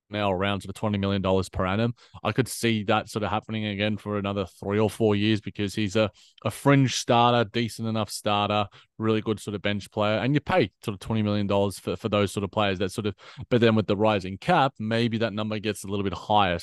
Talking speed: 245 wpm